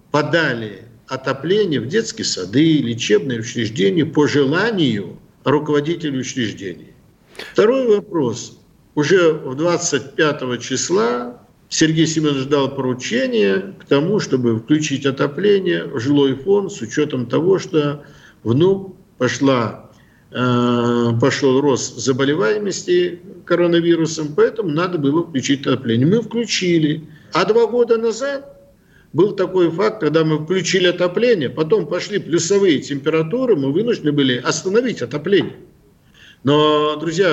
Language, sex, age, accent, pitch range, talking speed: Russian, male, 50-69, native, 135-185 Hz, 110 wpm